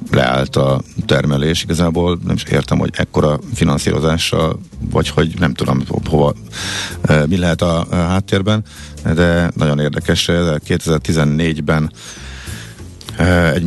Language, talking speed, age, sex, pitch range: Hungarian, 115 wpm, 50-69, male, 80-95 Hz